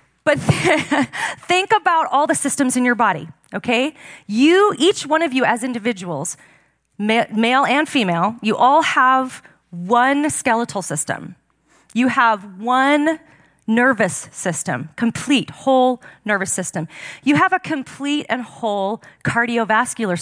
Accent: American